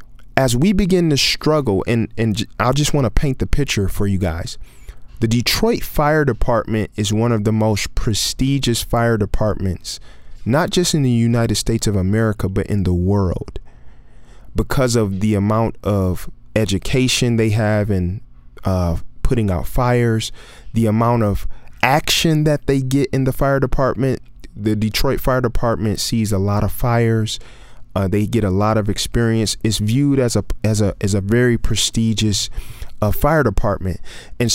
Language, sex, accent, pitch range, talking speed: English, male, American, 100-130 Hz, 165 wpm